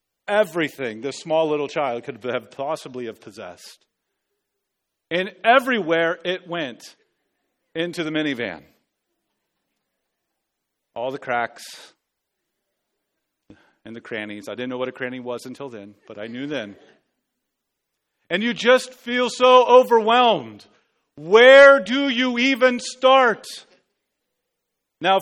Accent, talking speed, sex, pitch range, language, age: American, 115 wpm, male, 165-230 Hz, English, 40-59